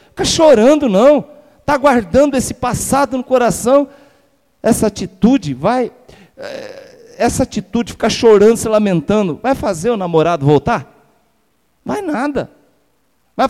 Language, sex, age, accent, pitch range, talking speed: Portuguese, male, 50-69, Brazilian, 170-245 Hz, 115 wpm